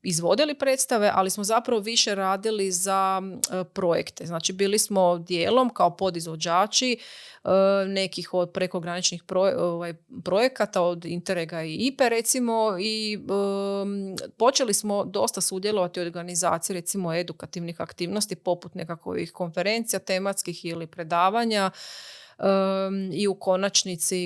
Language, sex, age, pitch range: Croatian, female, 30-49, 175-200 Hz